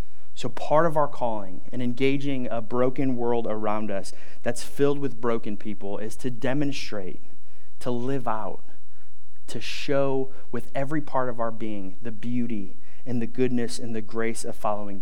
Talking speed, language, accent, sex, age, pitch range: 165 wpm, English, American, male, 30-49, 105-135 Hz